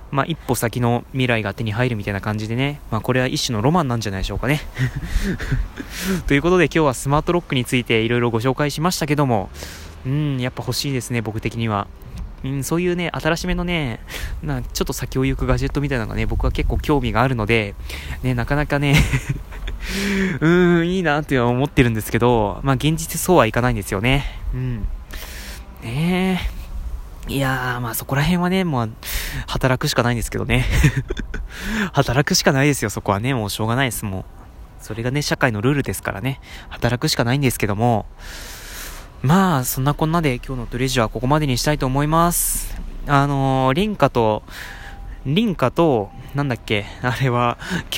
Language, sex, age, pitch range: Japanese, male, 20-39, 115-145 Hz